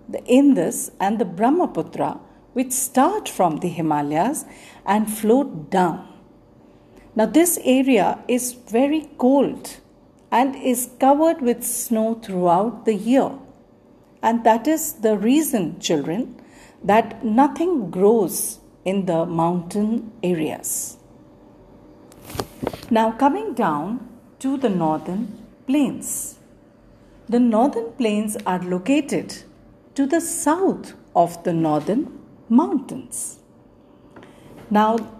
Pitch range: 195-270 Hz